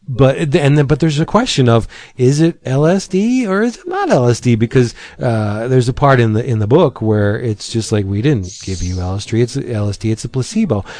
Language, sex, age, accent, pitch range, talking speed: English, male, 40-59, American, 110-140 Hz, 220 wpm